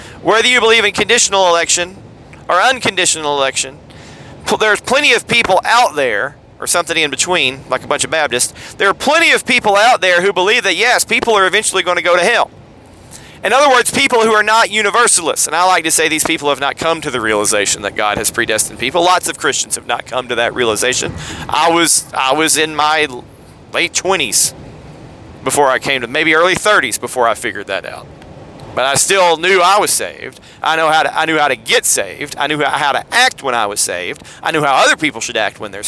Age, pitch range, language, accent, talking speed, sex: 30-49, 155-195 Hz, English, American, 215 wpm, male